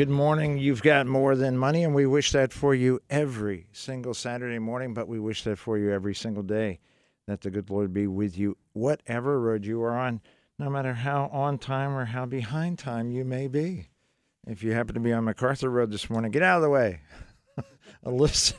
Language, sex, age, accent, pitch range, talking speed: English, male, 50-69, American, 105-135 Hz, 215 wpm